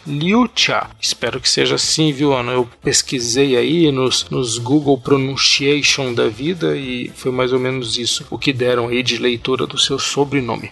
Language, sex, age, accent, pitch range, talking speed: Portuguese, male, 40-59, Brazilian, 125-155 Hz, 175 wpm